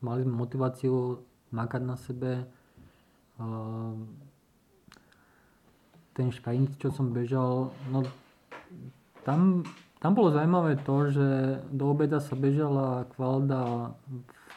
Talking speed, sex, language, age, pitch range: 95 wpm, male, Slovak, 20-39, 125-150 Hz